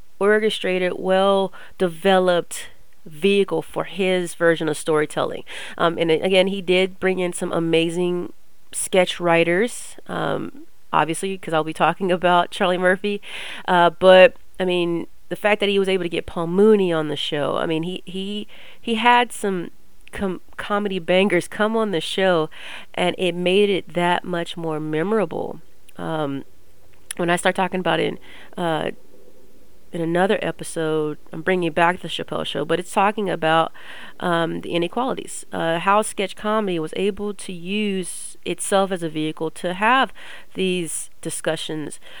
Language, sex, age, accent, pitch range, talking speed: English, female, 30-49, American, 165-200 Hz, 150 wpm